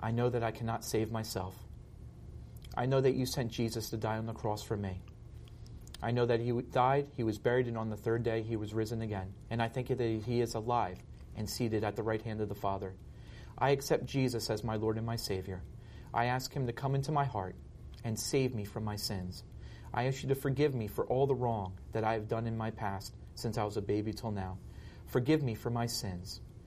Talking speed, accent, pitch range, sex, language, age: 240 wpm, American, 105-125 Hz, male, English, 40-59